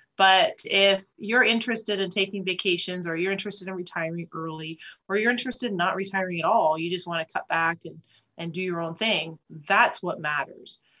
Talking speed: 195 wpm